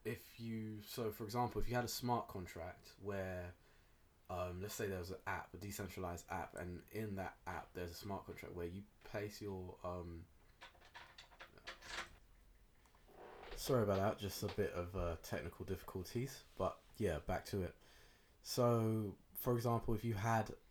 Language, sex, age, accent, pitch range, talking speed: English, male, 20-39, British, 85-105 Hz, 160 wpm